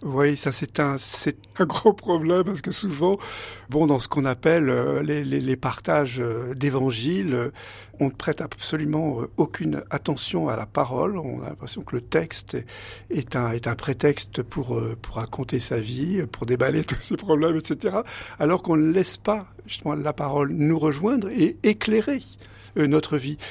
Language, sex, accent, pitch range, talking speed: French, male, French, 125-165 Hz, 170 wpm